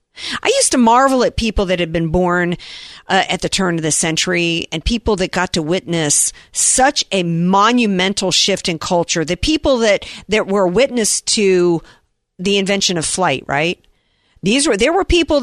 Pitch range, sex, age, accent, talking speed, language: 165-210 Hz, female, 50-69, American, 180 wpm, English